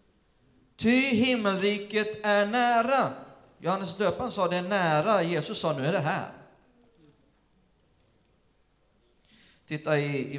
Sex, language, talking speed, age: male, Swedish, 105 wpm, 40-59